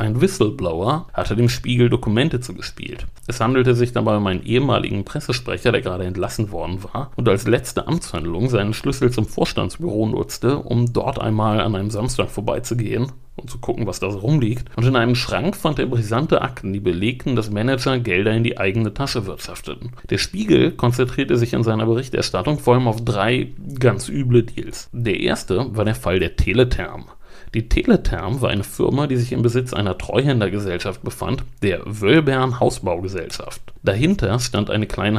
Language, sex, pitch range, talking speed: German, male, 105-125 Hz, 170 wpm